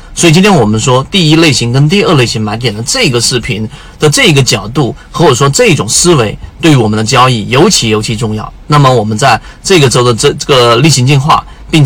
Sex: male